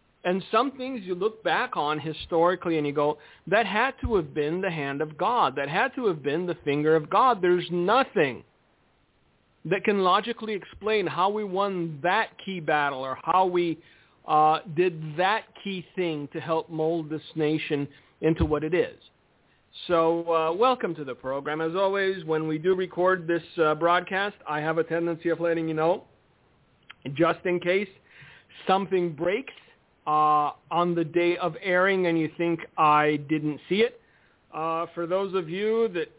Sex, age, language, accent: male, 40-59, English, American